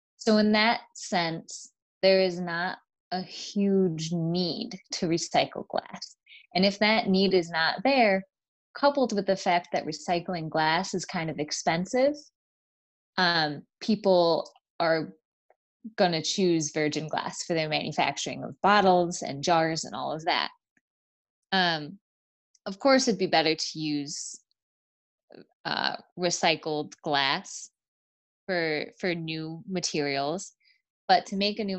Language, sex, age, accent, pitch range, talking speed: English, female, 20-39, American, 165-205 Hz, 130 wpm